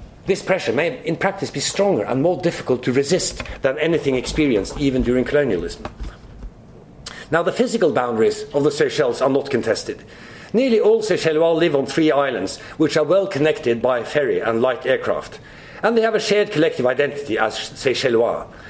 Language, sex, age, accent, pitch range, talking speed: English, male, 50-69, Swedish, 150-215 Hz, 170 wpm